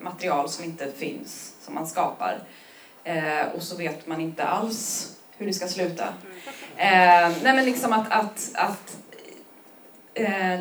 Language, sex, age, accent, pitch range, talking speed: Swedish, female, 20-39, native, 170-235 Hz, 145 wpm